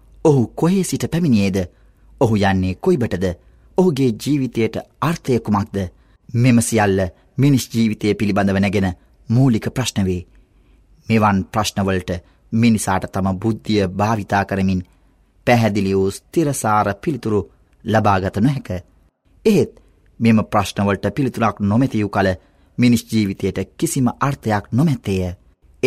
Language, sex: Arabic, male